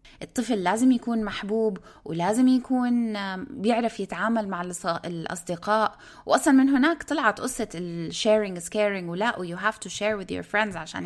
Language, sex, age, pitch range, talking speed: Arabic, female, 20-39, 175-235 Hz, 150 wpm